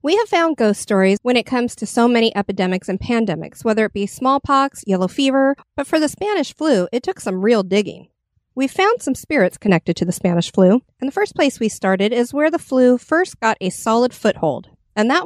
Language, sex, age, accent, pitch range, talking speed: English, female, 40-59, American, 190-275 Hz, 220 wpm